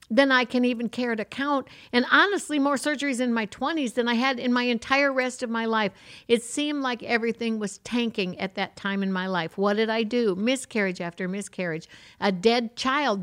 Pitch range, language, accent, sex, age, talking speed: 195-260 Hz, English, American, female, 60-79, 210 wpm